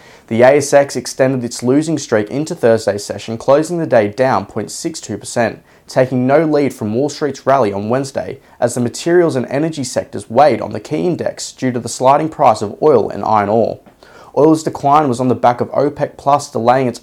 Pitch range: 115-140 Hz